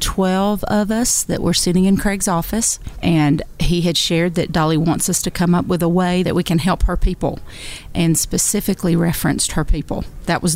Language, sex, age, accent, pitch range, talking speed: English, female, 40-59, American, 165-195 Hz, 205 wpm